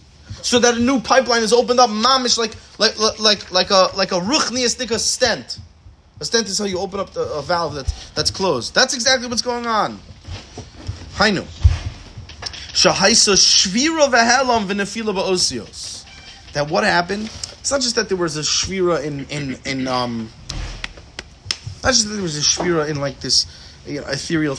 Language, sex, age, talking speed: English, male, 30-49, 160 wpm